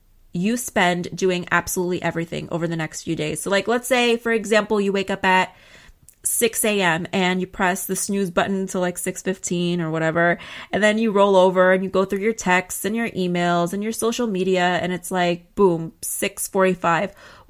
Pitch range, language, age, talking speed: 180-220 Hz, English, 30-49, 190 wpm